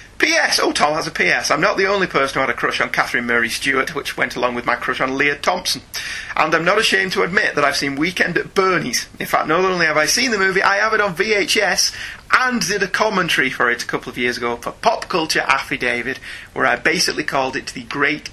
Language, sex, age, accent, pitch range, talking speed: English, male, 30-49, British, 130-185 Hz, 245 wpm